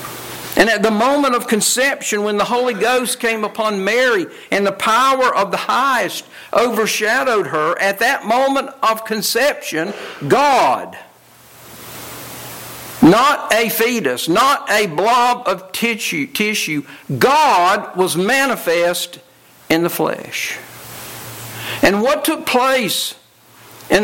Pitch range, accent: 190-255 Hz, American